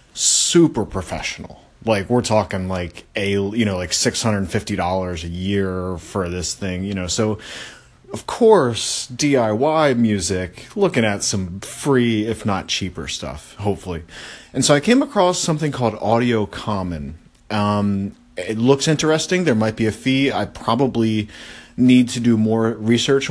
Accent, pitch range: American, 95-125 Hz